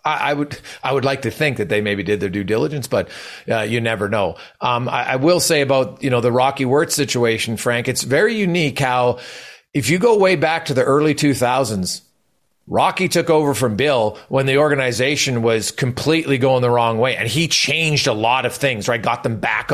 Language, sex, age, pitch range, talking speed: English, male, 40-59, 125-170 Hz, 215 wpm